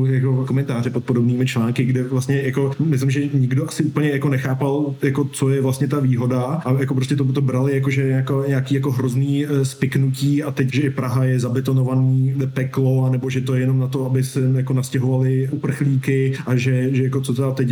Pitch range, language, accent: 125-135 Hz, Czech, native